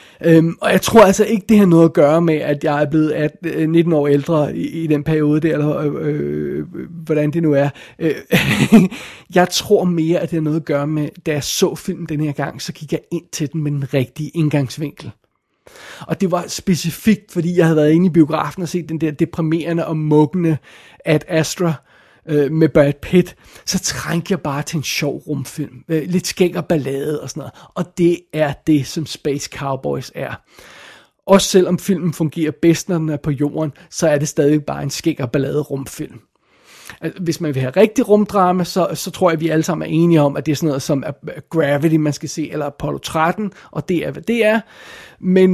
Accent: native